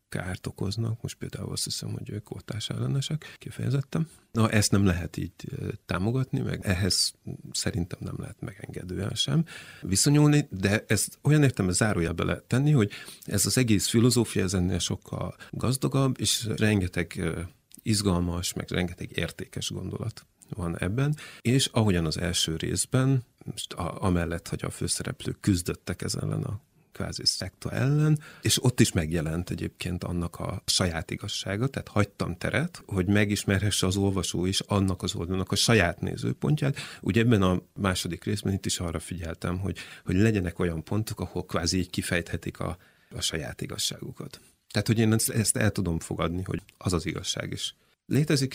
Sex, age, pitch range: male, 30-49, 90-125 Hz